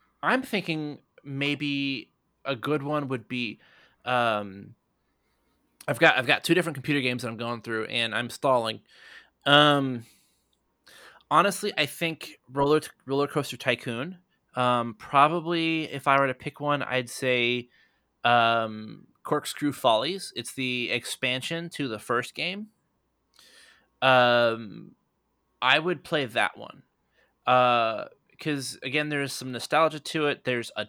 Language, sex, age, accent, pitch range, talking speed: English, male, 20-39, American, 115-150 Hz, 135 wpm